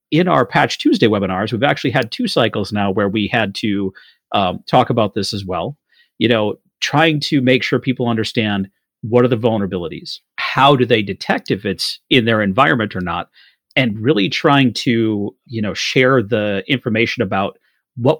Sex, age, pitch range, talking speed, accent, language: male, 40-59, 100-130 Hz, 180 wpm, American, English